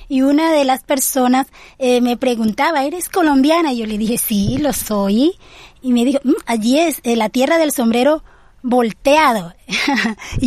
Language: Spanish